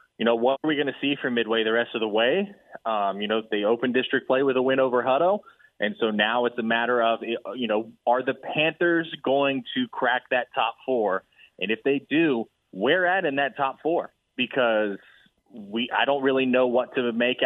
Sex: male